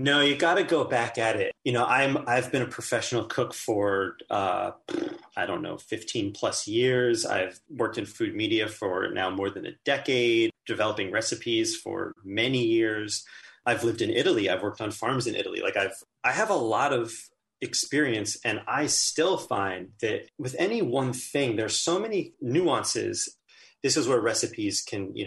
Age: 30-49